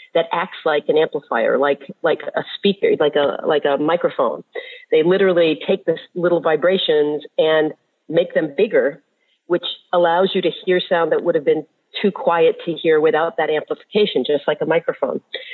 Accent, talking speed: American, 175 wpm